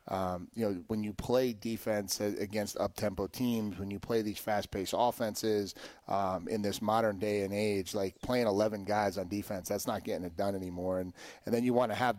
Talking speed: 205 wpm